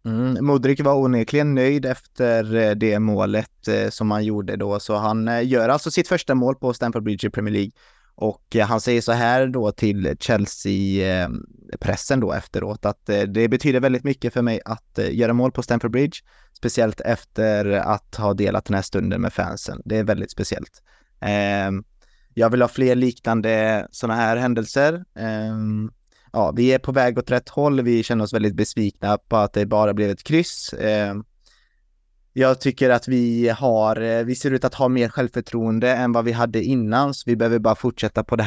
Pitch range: 105-125 Hz